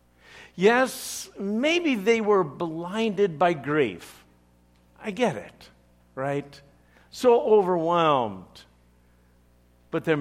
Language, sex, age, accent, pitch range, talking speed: English, male, 60-79, American, 100-165 Hz, 90 wpm